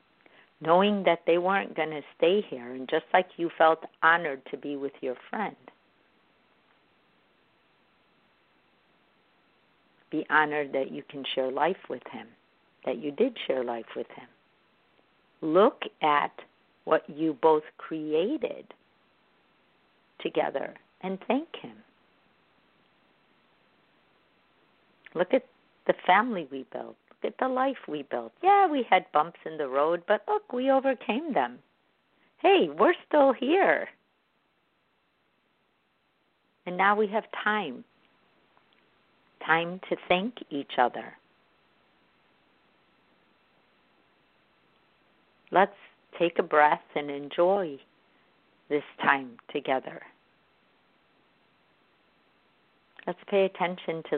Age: 50-69